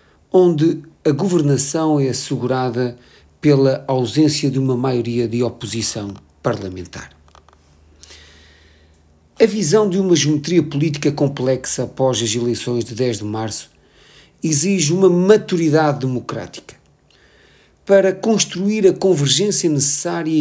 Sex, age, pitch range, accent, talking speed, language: male, 40-59, 120-160 Hz, Portuguese, 105 wpm, Portuguese